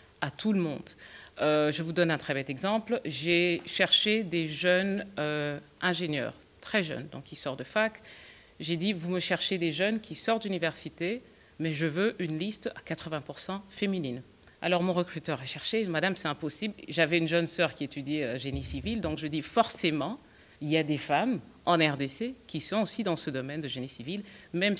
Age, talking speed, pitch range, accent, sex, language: 40-59, 195 wpm, 150-195 Hz, French, female, French